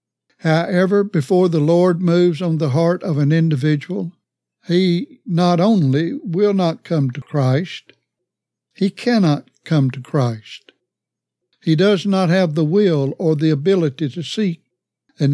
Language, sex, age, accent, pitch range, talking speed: English, male, 60-79, American, 150-190 Hz, 140 wpm